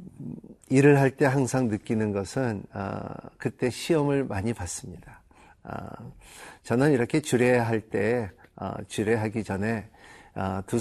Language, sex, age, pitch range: Korean, male, 50-69, 105-130 Hz